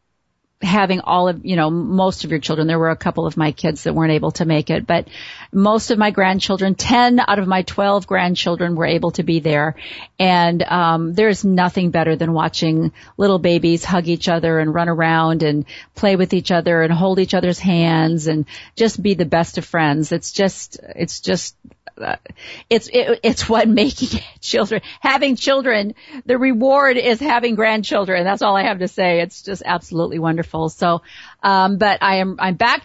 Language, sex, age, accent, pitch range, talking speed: English, female, 50-69, American, 170-215 Hz, 190 wpm